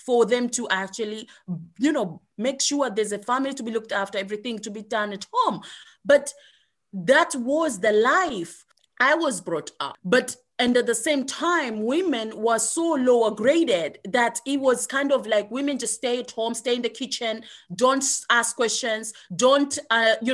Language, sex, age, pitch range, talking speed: English, female, 30-49, 215-290 Hz, 185 wpm